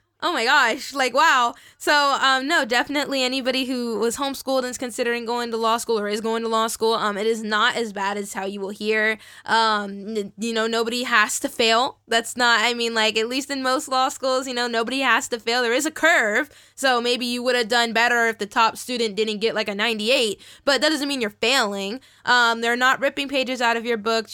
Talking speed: 235 wpm